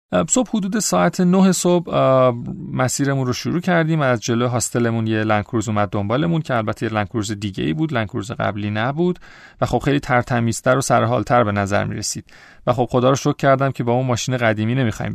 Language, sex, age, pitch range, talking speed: Persian, male, 40-59, 115-155 Hz, 180 wpm